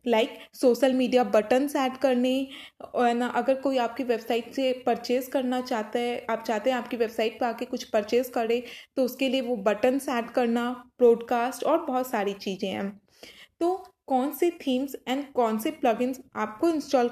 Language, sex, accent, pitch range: Hindi, female, native, 235-285 Hz